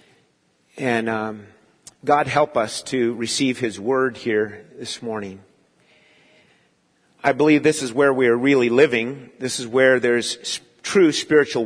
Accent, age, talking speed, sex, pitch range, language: American, 50-69, 140 wpm, male, 125-160 Hz, English